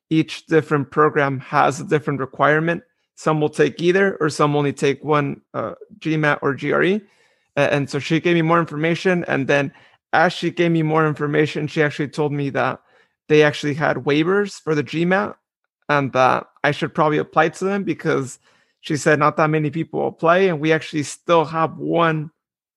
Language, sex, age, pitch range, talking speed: English, male, 30-49, 145-170 Hz, 185 wpm